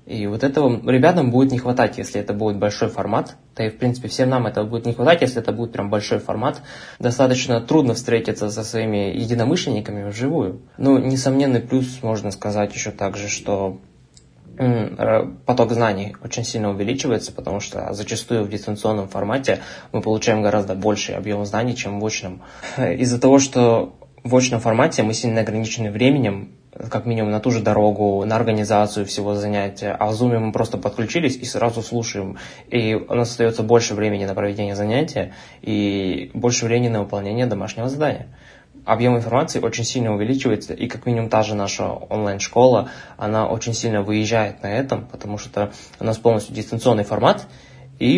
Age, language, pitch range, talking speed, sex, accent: 20-39, Russian, 105-120 Hz, 165 wpm, male, native